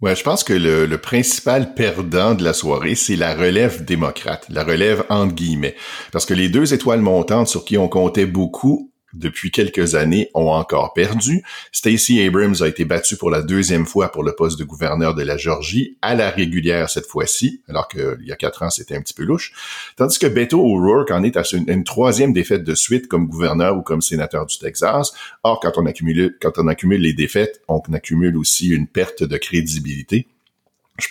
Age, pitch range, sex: 50-69, 80-100 Hz, male